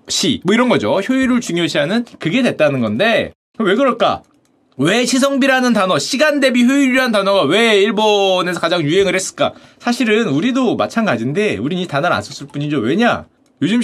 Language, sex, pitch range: Korean, male, 205-275 Hz